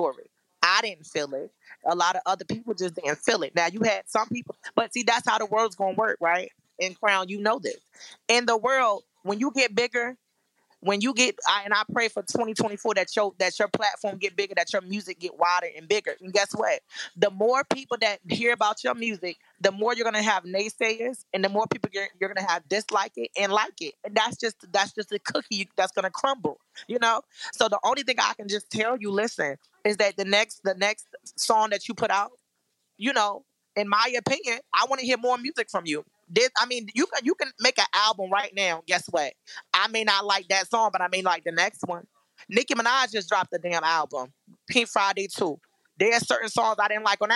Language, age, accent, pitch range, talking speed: English, 20-39, American, 190-230 Hz, 230 wpm